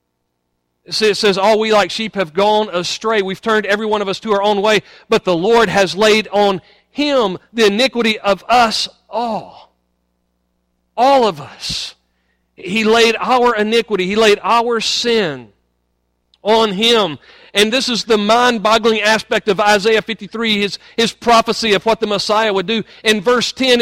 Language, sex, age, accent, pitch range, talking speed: English, male, 40-59, American, 165-225 Hz, 165 wpm